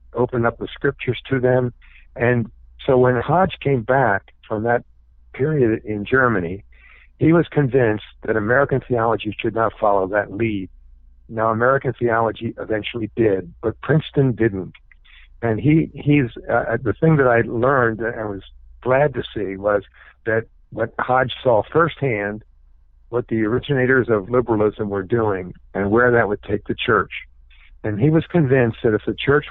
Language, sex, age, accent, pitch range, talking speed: English, male, 50-69, American, 105-125 Hz, 160 wpm